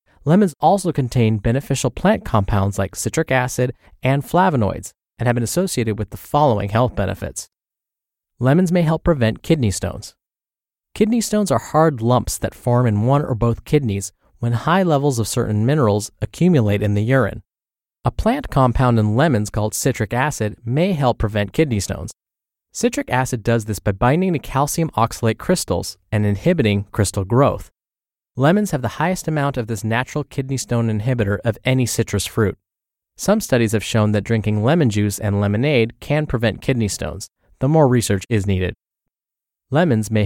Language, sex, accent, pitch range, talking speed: English, male, American, 105-150 Hz, 165 wpm